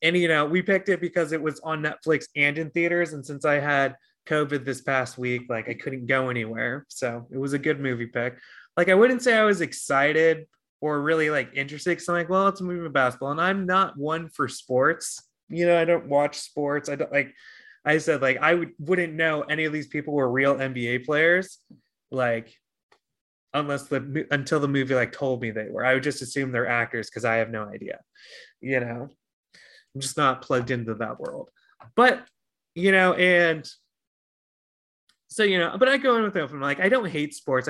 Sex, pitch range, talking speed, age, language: male, 130-175 Hz, 210 wpm, 20-39, English